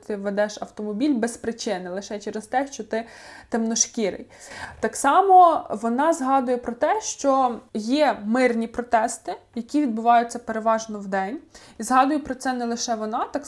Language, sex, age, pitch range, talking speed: Ukrainian, female, 20-39, 225-265 Hz, 150 wpm